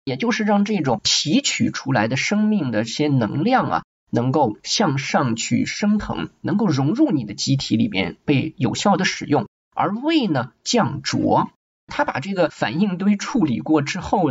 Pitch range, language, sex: 135-220 Hz, Chinese, male